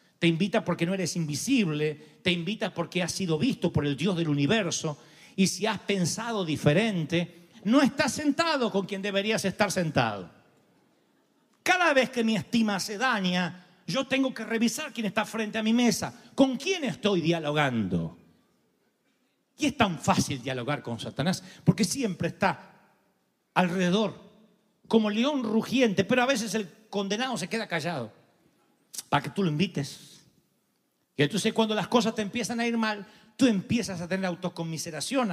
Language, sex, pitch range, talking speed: Spanish, male, 170-225 Hz, 155 wpm